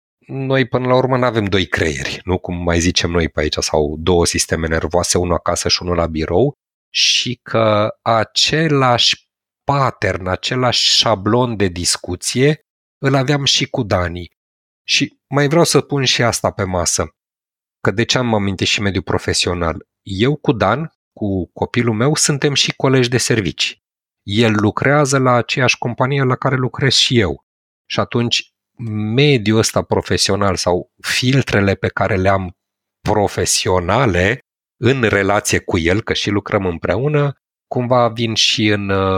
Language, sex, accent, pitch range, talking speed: Romanian, male, native, 90-130 Hz, 150 wpm